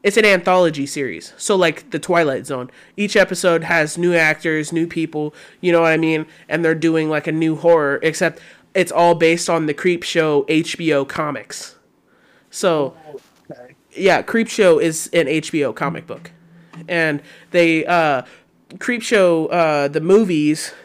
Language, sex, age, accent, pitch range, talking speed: English, male, 20-39, American, 155-185 Hz, 155 wpm